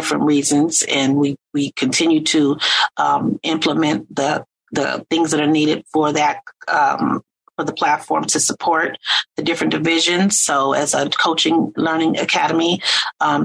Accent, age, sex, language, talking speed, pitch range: American, 30-49, female, English, 145 wpm, 145-165 Hz